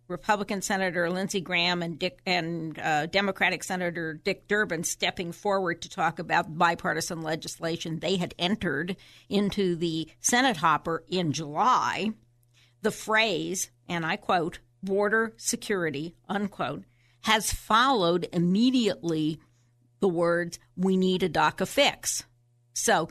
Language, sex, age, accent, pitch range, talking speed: English, female, 50-69, American, 150-200 Hz, 120 wpm